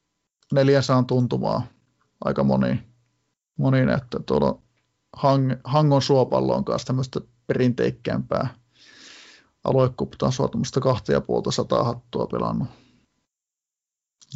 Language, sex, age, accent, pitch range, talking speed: Finnish, male, 30-49, native, 120-140 Hz, 90 wpm